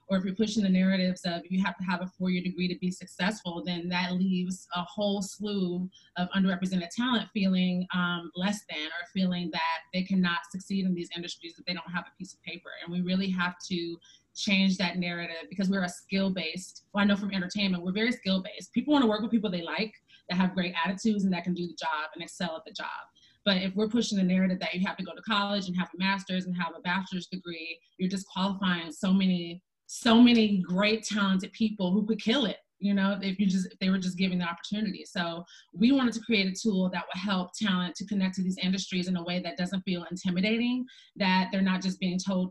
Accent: American